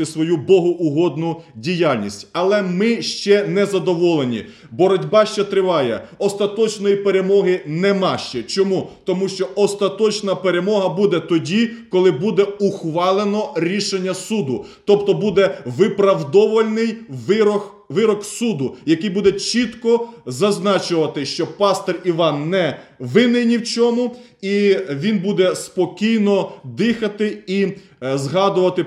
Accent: native